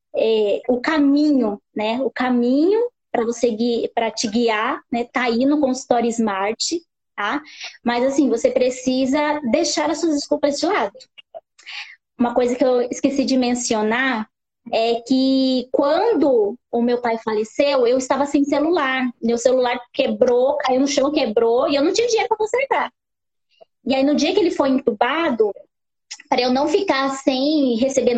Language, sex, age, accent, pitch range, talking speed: Portuguese, female, 20-39, Brazilian, 245-295 Hz, 160 wpm